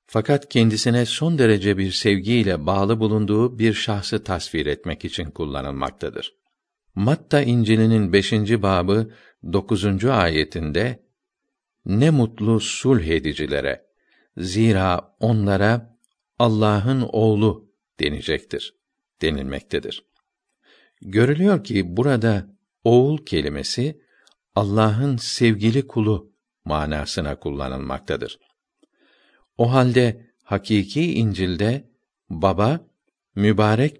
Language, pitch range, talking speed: Turkish, 95-120 Hz, 80 wpm